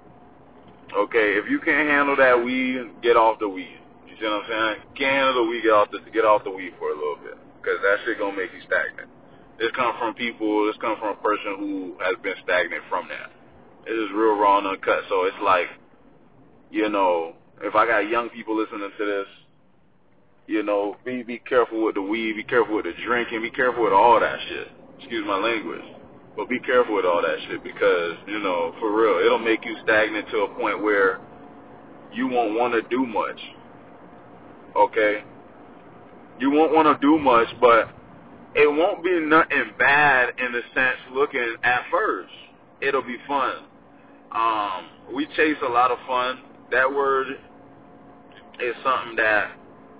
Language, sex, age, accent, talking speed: English, male, 20-39, American, 190 wpm